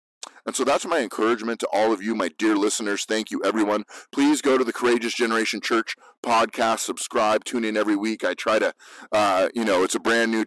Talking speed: 220 wpm